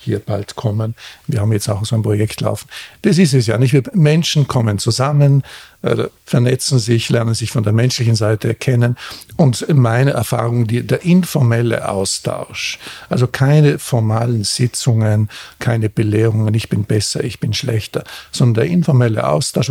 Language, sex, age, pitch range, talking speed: German, male, 50-69, 110-135 Hz, 160 wpm